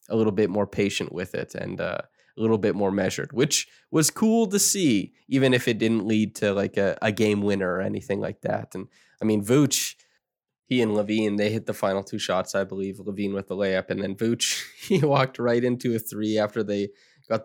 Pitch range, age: 100-120 Hz, 20-39